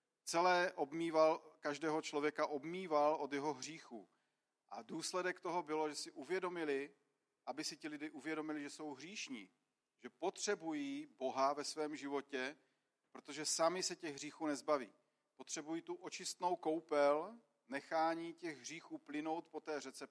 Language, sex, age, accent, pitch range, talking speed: Czech, male, 40-59, native, 150-185 Hz, 135 wpm